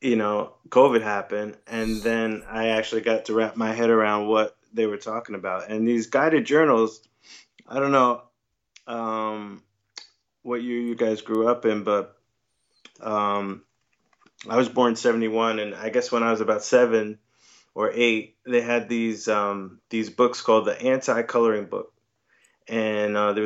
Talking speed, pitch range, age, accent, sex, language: 165 wpm, 105-120 Hz, 20-39, American, male, English